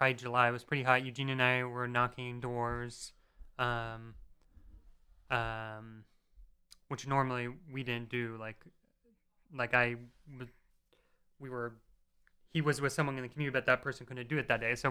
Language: English